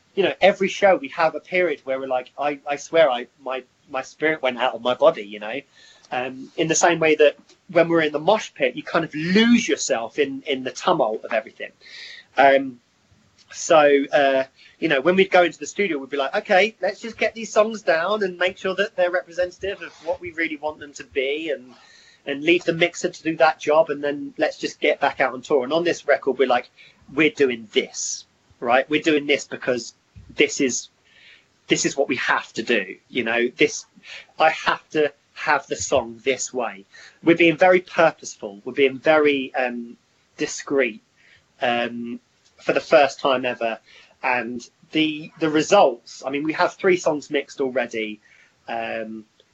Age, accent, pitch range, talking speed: 30-49, British, 130-180 Hz, 195 wpm